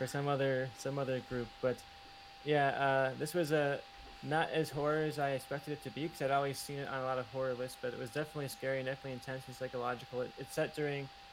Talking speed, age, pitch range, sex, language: 245 wpm, 20-39, 125-140 Hz, male, English